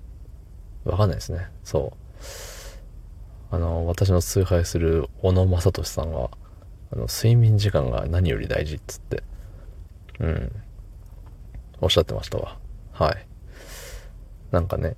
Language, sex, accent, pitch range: Japanese, male, native, 85-100 Hz